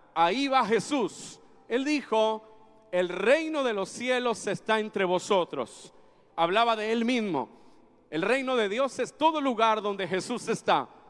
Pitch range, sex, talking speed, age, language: 200-260 Hz, male, 145 wpm, 40-59, Spanish